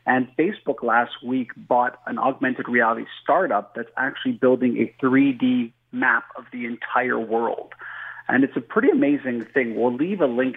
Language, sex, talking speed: English, male, 165 wpm